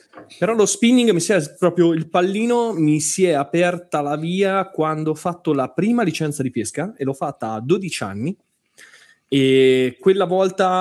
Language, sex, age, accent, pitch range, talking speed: Italian, male, 20-39, native, 120-180 Hz, 180 wpm